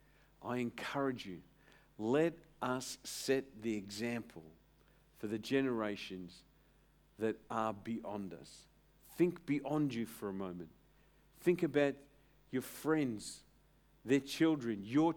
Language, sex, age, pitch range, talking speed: English, male, 50-69, 115-160 Hz, 110 wpm